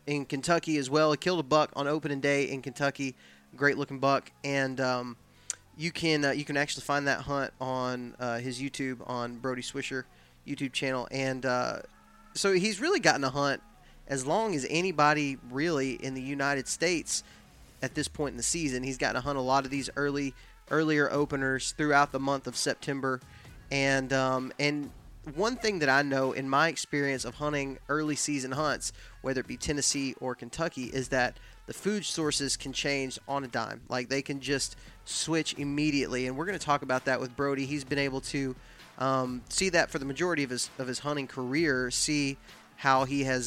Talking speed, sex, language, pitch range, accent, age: 195 wpm, male, English, 130-145 Hz, American, 20-39